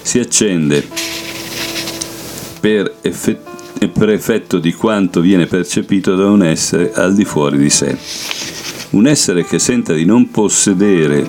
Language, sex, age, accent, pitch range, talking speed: Italian, male, 50-69, native, 75-95 Hz, 120 wpm